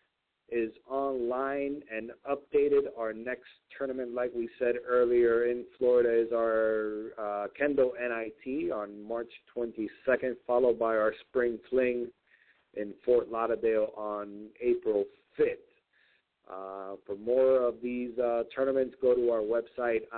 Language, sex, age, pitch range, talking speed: English, male, 40-59, 115-140 Hz, 130 wpm